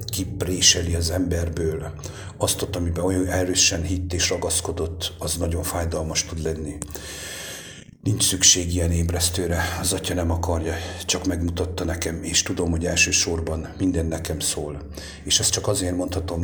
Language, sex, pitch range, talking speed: English, male, 80-90 Hz, 140 wpm